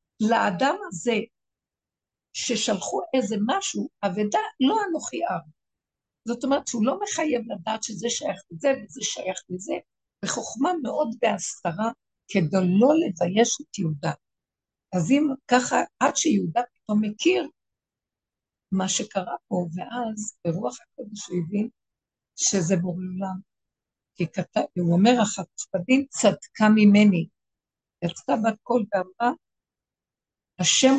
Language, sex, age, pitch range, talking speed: Hebrew, female, 60-79, 175-235 Hz, 110 wpm